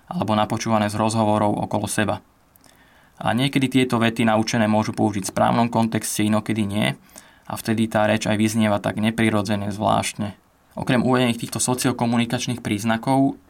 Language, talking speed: Slovak, 140 wpm